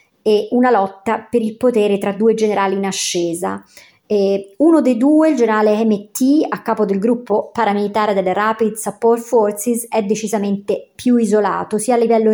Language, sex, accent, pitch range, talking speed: Italian, male, native, 195-235 Hz, 165 wpm